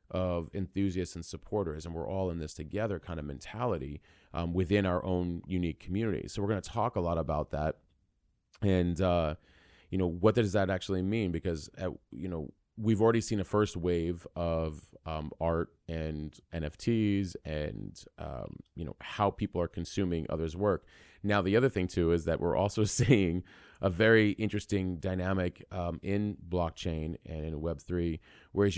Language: English